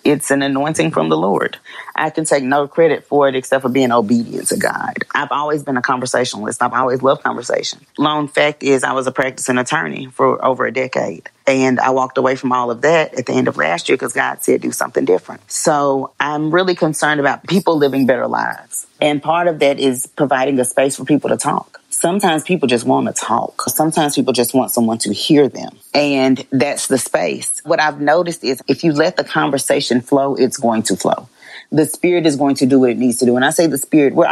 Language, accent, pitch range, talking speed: English, American, 130-155 Hz, 225 wpm